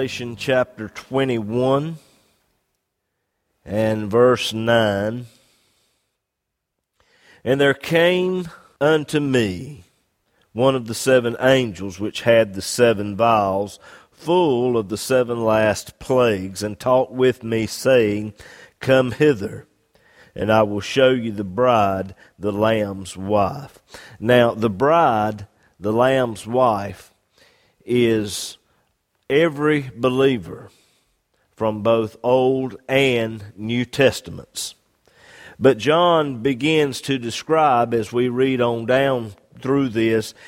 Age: 50-69